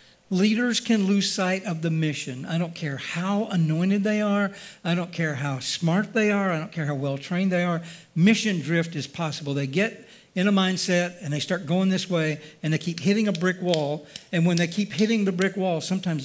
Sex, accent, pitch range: male, American, 145-180 Hz